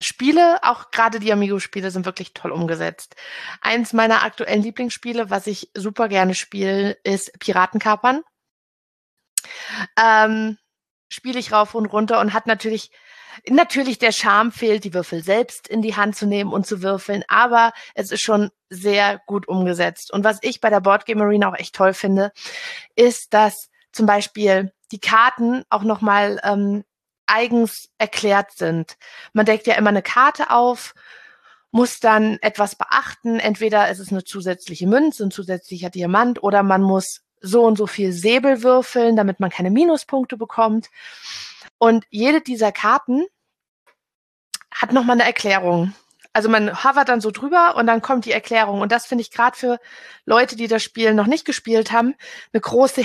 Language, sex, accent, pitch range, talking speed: German, female, German, 200-240 Hz, 165 wpm